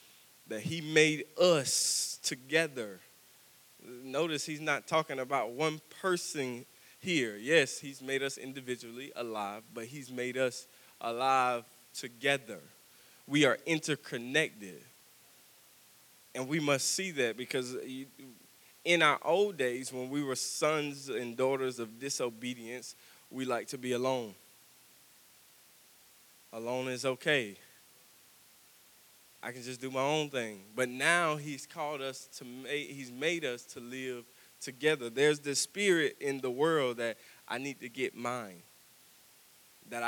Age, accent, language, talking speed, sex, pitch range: 20-39, American, English, 130 wpm, male, 125-145 Hz